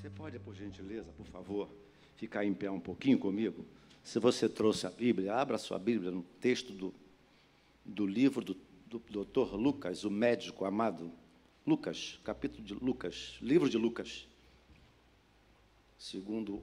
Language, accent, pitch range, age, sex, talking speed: Portuguese, Brazilian, 80-120 Hz, 60-79, male, 140 wpm